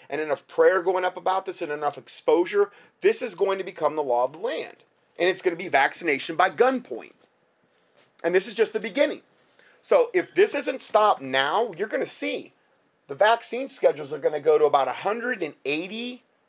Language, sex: English, male